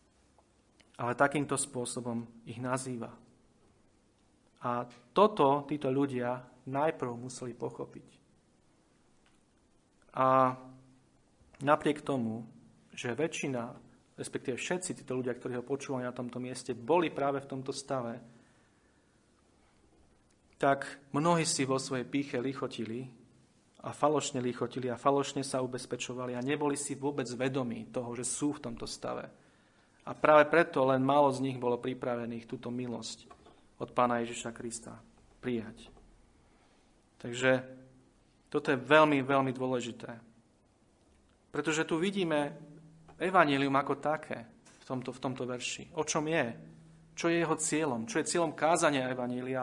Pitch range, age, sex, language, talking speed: 120-150 Hz, 40-59, male, Slovak, 125 wpm